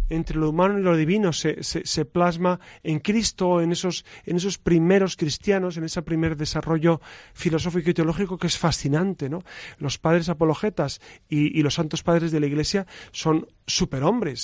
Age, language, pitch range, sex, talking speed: 40-59, Spanish, 150-190 Hz, male, 175 wpm